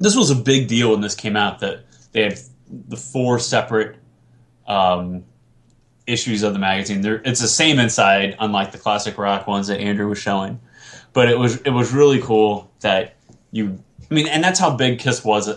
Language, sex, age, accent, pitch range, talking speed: English, male, 20-39, American, 95-120 Hz, 195 wpm